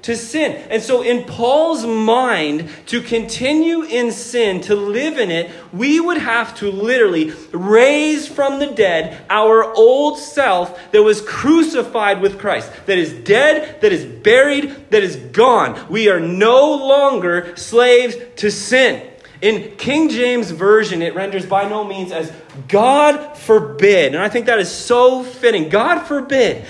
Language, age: English, 30-49